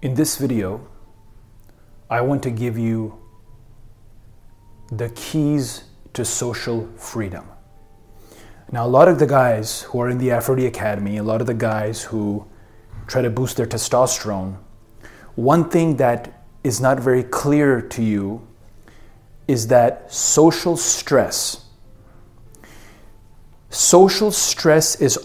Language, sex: English, male